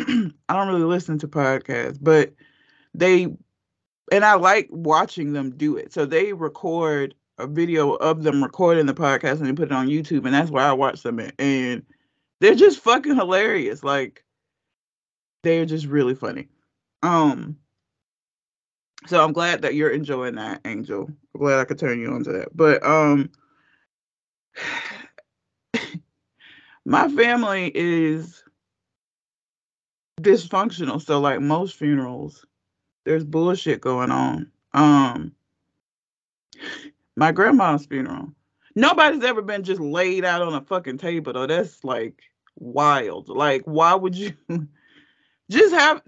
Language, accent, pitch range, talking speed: English, American, 145-200 Hz, 135 wpm